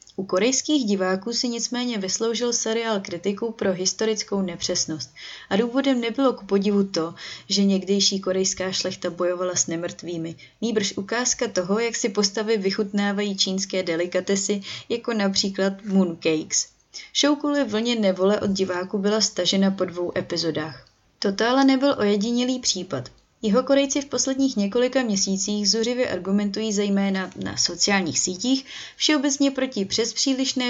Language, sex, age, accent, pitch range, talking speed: Czech, female, 20-39, native, 185-235 Hz, 135 wpm